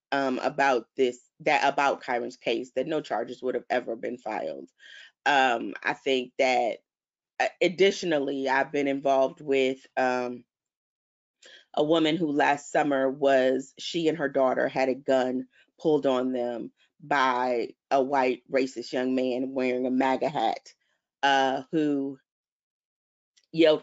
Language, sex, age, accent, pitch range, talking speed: English, female, 30-49, American, 130-155 Hz, 135 wpm